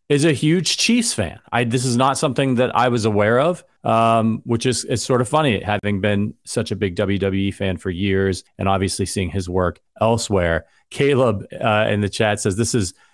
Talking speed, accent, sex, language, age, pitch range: 205 wpm, American, male, English, 30-49, 105-130 Hz